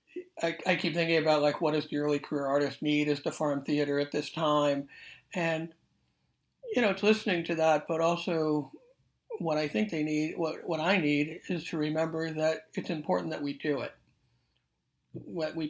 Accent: American